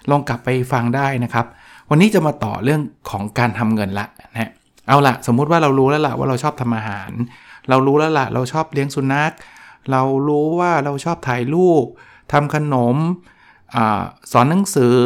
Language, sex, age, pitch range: Thai, male, 60-79, 115-145 Hz